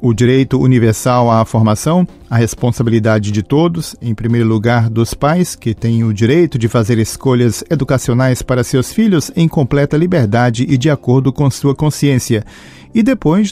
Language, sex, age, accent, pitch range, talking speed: Portuguese, male, 40-59, Brazilian, 120-160 Hz, 160 wpm